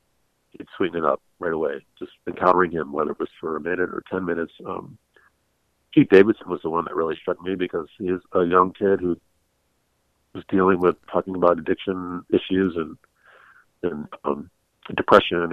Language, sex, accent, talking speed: English, male, American, 175 wpm